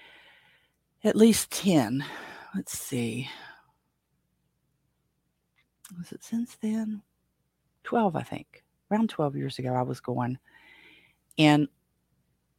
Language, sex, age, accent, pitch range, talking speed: English, female, 40-59, American, 130-175 Hz, 95 wpm